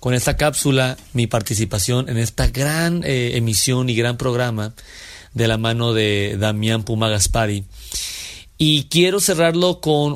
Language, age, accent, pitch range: Spanish, 40-59, Mexican, 115-145 Hz